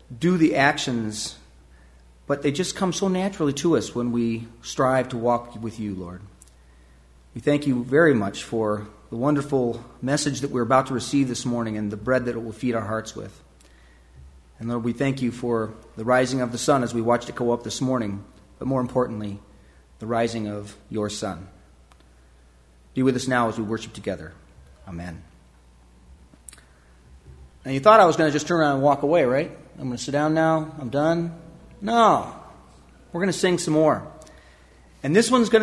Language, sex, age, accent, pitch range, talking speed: English, male, 40-59, American, 95-155 Hz, 190 wpm